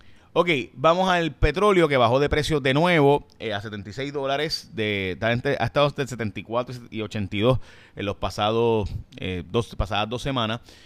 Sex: male